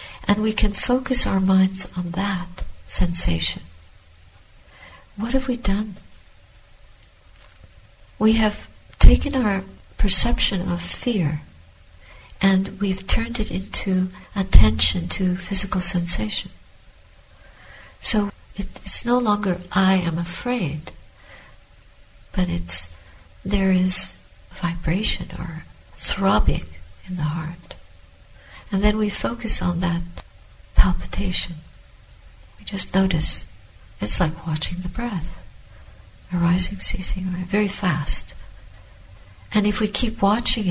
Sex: female